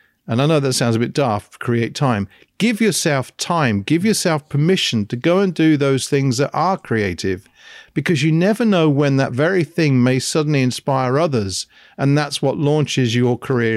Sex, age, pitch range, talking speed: male, 50-69, 120-155 Hz, 185 wpm